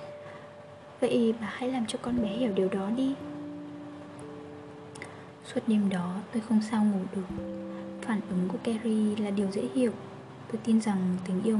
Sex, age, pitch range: female, 10-29, 145-230 Hz